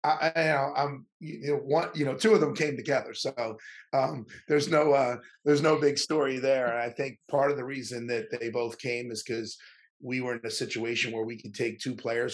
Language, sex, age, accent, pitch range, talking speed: English, male, 30-49, American, 110-135 Hz, 240 wpm